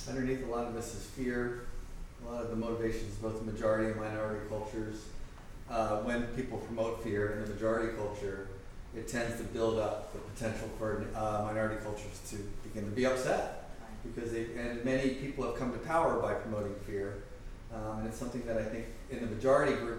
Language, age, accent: English, 30-49, American